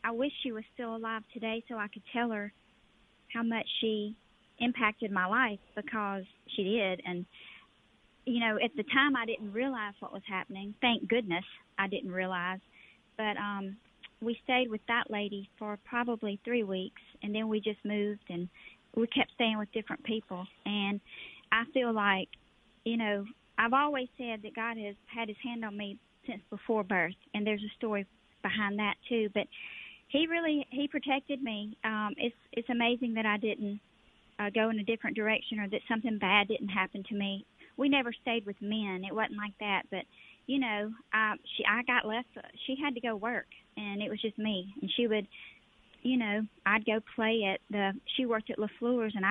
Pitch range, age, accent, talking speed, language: 205-235 Hz, 40-59, American, 190 wpm, English